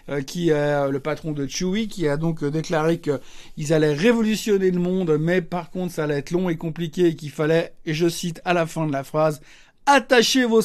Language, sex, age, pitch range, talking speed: French, male, 60-79, 165-235 Hz, 220 wpm